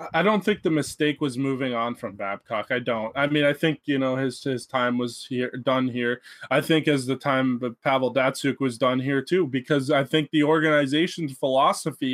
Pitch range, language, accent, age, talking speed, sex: 130-170 Hz, English, American, 20-39, 215 wpm, male